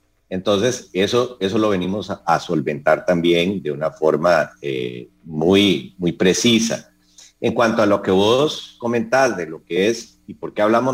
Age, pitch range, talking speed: 50-69, 75-120 Hz, 170 wpm